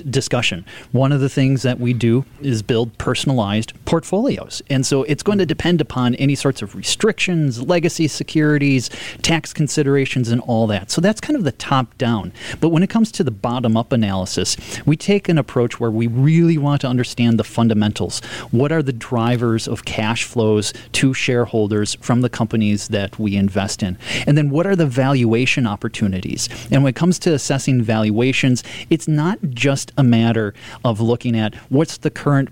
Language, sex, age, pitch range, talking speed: English, male, 30-49, 115-145 Hz, 180 wpm